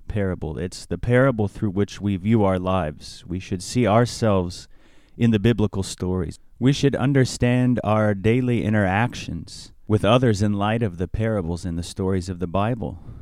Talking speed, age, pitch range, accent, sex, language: 170 wpm, 30-49, 90-115 Hz, American, male, English